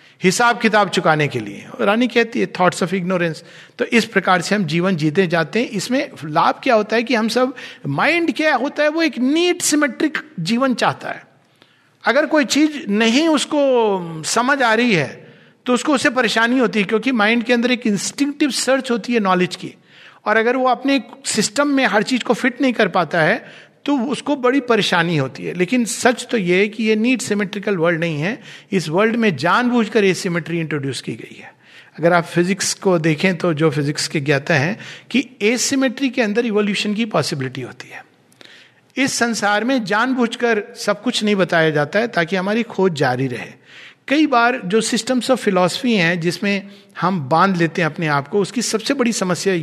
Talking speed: 200 wpm